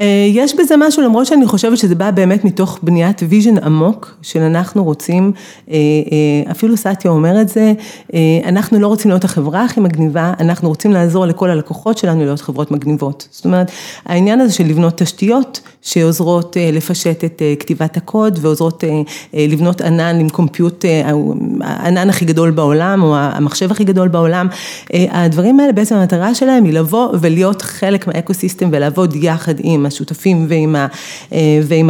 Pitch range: 160-215 Hz